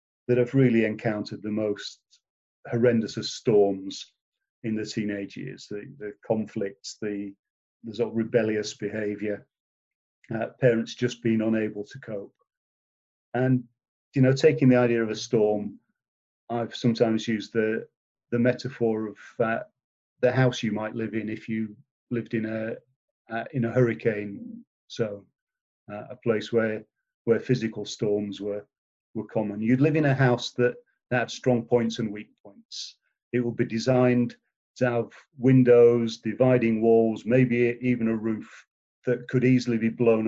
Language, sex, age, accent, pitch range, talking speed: English, male, 40-59, British, 110-125 Hz, 155 wpm